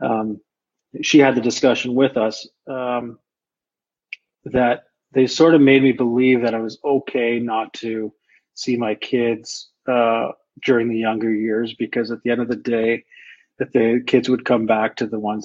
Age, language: 30-49, English